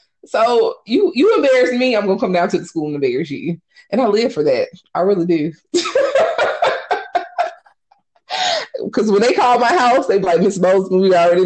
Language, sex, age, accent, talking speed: English, female, 20-39, American, 195 wpm